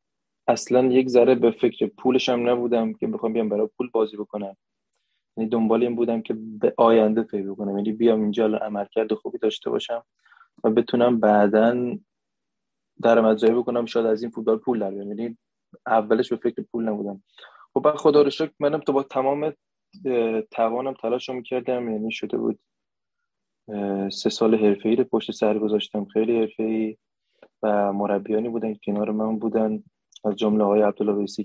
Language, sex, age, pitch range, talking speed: English, male, 20-39, 105-120 Hz, 160 wpm